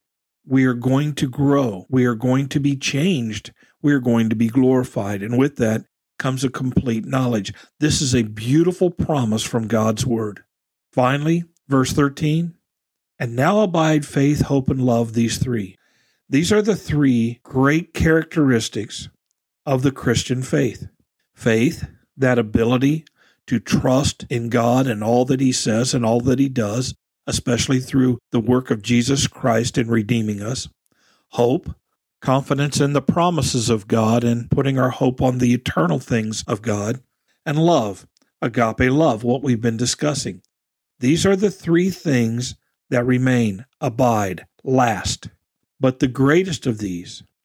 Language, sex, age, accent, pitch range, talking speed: English, male, 50-69, American, 115-145 Hz, 150 wpm